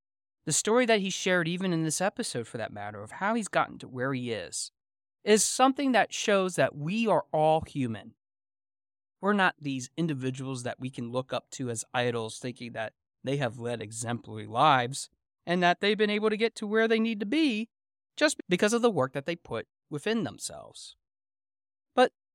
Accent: American